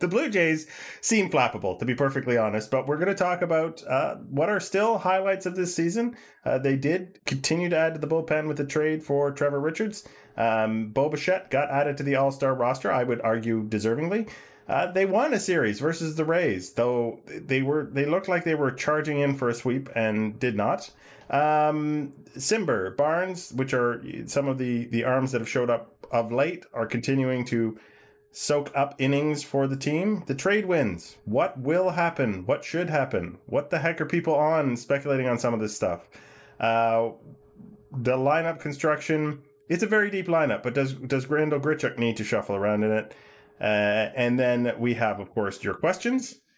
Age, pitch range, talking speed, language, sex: 30-49, 120-160 Hz, 195 wpm, English, male